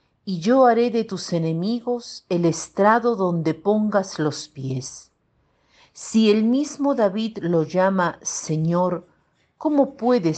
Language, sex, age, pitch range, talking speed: Spanish, female, 50-69, 150-210 Hz, 120 wpm